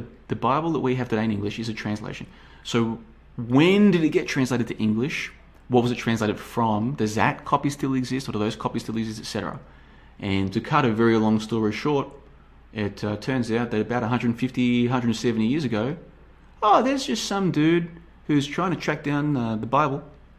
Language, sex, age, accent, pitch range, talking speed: English, male, 30-49, Australian, 115-150 Hz, 195 wpm